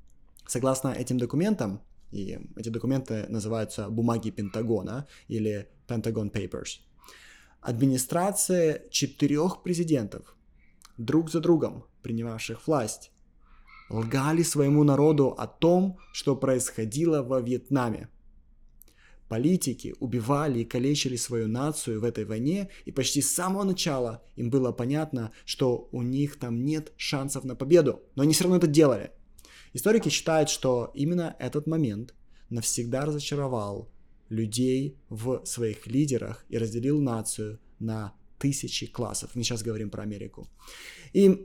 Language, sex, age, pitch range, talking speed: Russian, male, 20-39, 110-145 Hz, 120 wpm